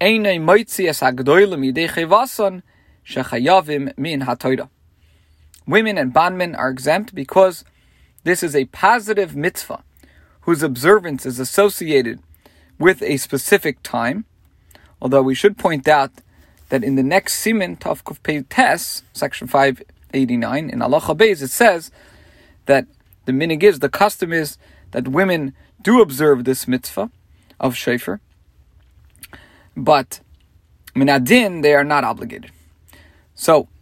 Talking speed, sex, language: 105 wpm, male, English